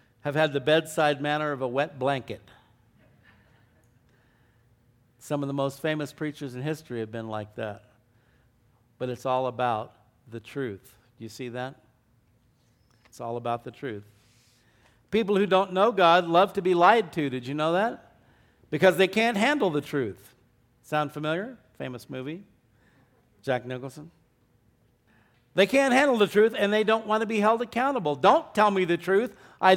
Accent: American